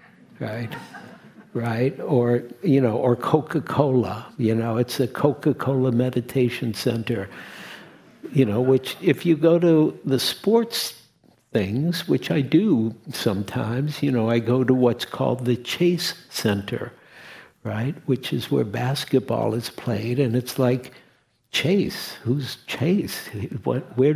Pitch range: 115-150 Hz